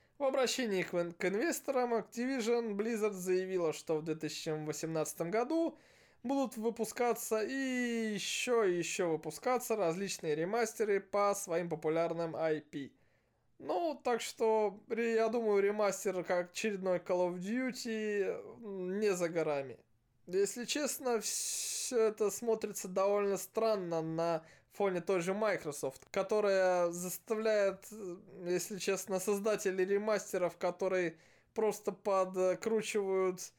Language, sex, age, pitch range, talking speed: Russian, male, 20-39, 175-220 Hz, 105 wpm